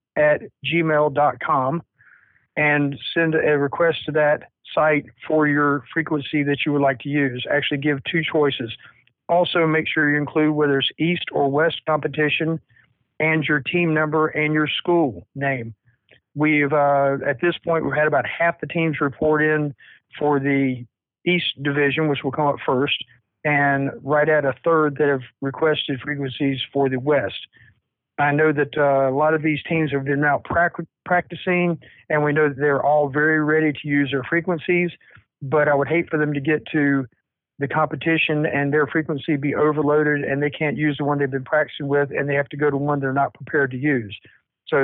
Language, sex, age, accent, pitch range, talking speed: English, male, 50-69, American, 140-155 Hz, 185 wpm